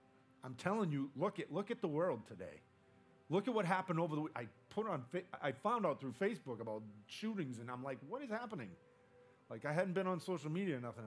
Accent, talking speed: American, 230 wpm